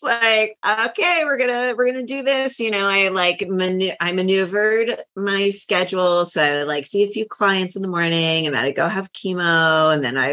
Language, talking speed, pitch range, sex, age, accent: English, 215 wpm, 150-185 Hz, female, 30-49, American